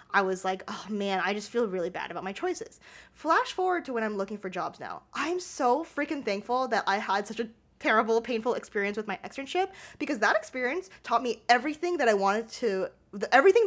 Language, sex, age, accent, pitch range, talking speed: English, female, 20-39, American, 200-275 Hz, 210 wpm